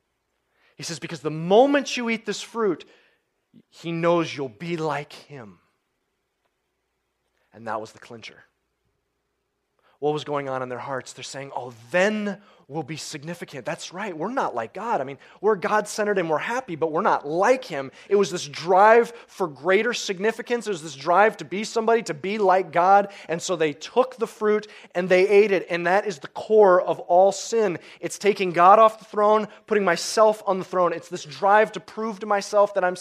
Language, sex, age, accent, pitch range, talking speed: English, male, 30-49, American, 160-210 Hz, 195 wpm